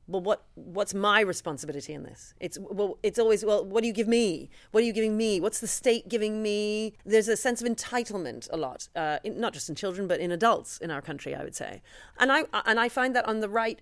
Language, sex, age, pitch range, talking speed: English, female, 30-49, 175-225 Hz, 250 wpm